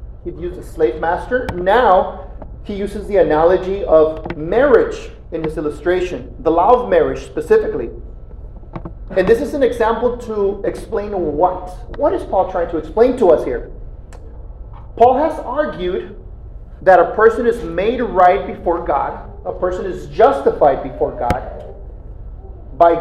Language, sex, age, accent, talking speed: English, male, 40-59, American, 145 wpm